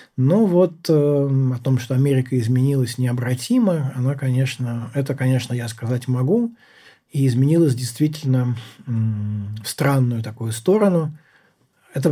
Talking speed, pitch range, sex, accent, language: 125 wpm, 120-145 Hz, male, native, Russian